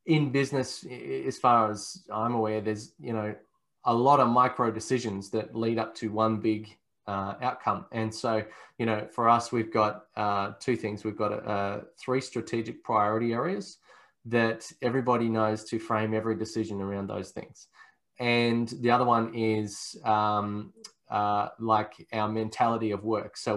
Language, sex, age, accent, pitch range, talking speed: English, male, 20-39, Australian, 105-120 Hz, 160 wpm